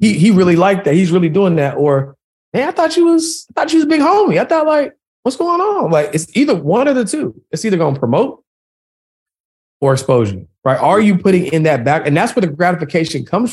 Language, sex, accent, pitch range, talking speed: English, male, American, 145-205 Hz, 245 wpm